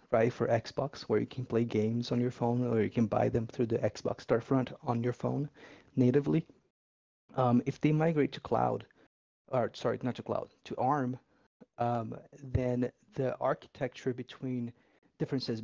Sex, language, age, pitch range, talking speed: male, English, 30-49, 115-130 Hz, 170 wpm